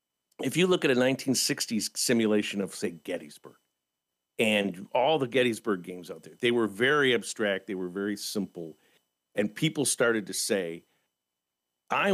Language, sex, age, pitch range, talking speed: English, male, 50-69, 100-130 Hz, 155 wpm